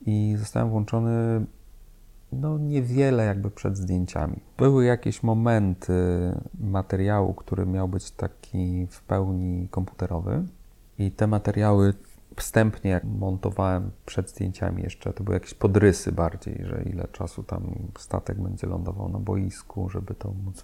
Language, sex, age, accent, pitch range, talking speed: Polish, male, 30-49, native, 95-110 Hz, 125 wpm